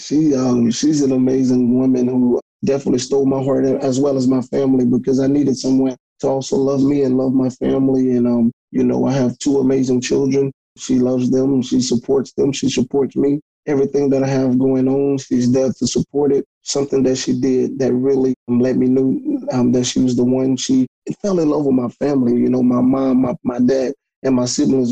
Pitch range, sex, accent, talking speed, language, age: 125-135 Hz, male, American, 215 wpm, English, 30-49